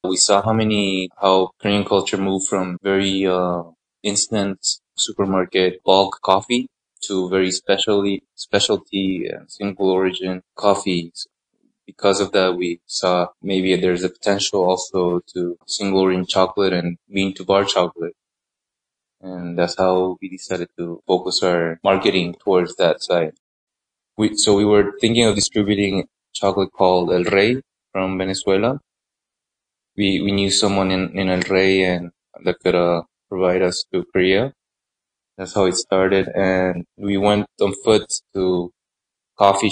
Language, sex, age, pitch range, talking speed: English, male, 20-39, 90-100 Hz, 135 wpm